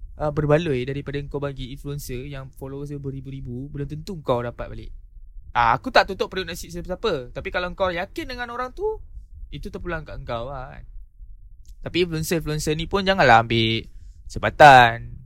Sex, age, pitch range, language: male, 20-39, 115-155 Hz, Malay